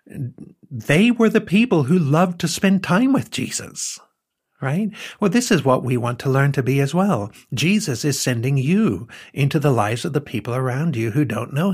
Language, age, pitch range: English, 60-79, 120-160 Hz